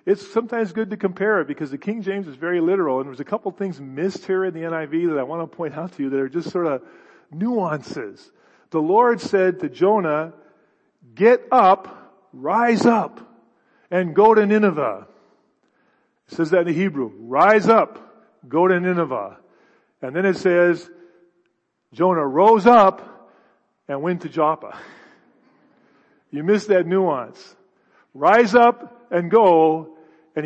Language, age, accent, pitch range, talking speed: English, 50-69, American, 155-195 Hz, 160 wpm